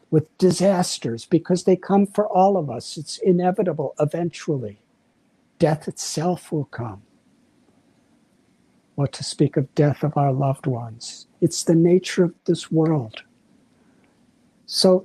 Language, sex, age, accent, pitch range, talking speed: English, male, 60-79, American, 160-205 Hz, 130 wpm